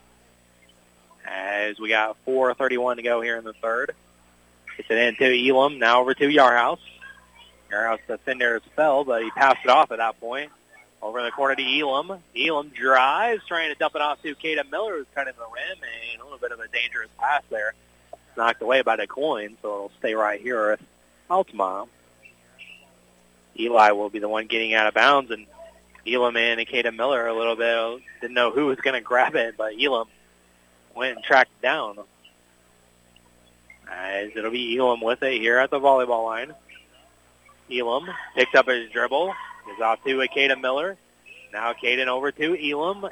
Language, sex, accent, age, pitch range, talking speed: English, male, American, 30-49, 105-160 Hz, 180 wpm